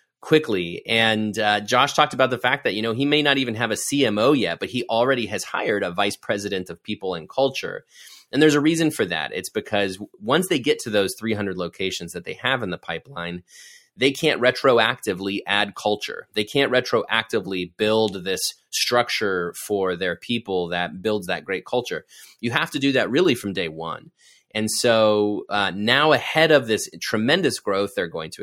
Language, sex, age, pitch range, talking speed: English, male, 30-49, 95-125 Hz, 195 wpm